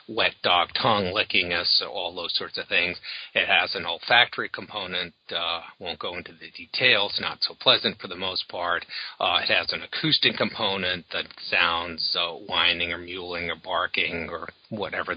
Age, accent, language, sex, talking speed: 40-59, American, English, male, 175 wpm